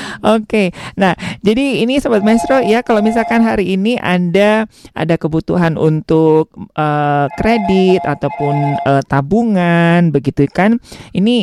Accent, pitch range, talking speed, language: native, 165-225 Hz, 125 wpm, Indonesian